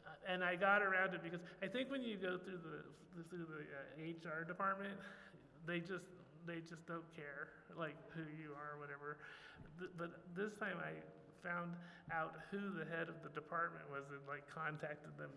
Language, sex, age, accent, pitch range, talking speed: Italian, male, 30-49, American, 150-175 Hz, 190 wpm